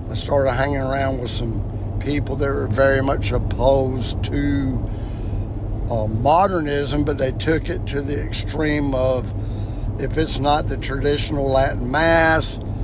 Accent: American